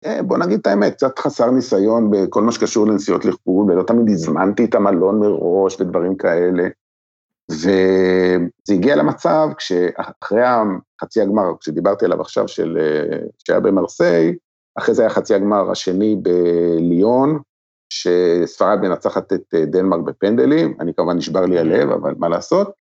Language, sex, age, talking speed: Hebrew, male, 50-69, 135 wpm